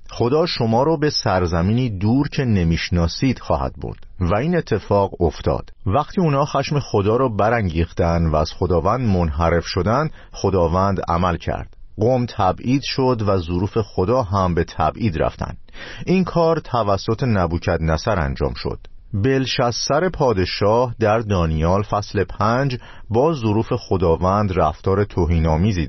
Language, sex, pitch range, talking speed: Persian, male, 90-115 Hz, 130 wpm